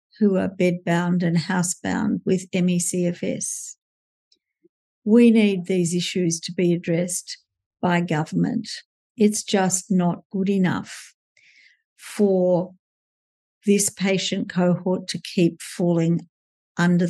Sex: female